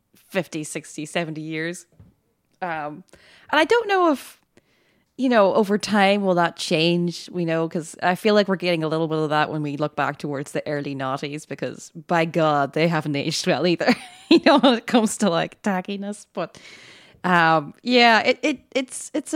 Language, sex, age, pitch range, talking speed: English, female, 20-39, 160-230 Hz, 190 wpm